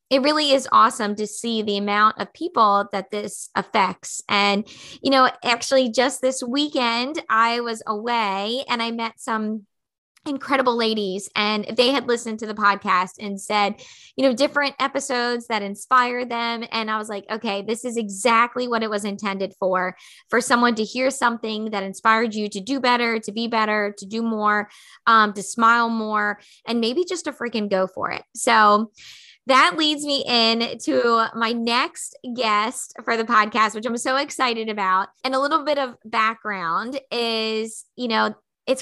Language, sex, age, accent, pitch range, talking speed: English, female, 20-39, American, 210-250 Hz, 175 wpm